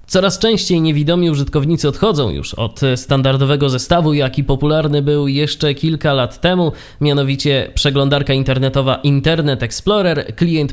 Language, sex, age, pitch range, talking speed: Polish, male, 20-39, 135-175 Hz, 125 wpm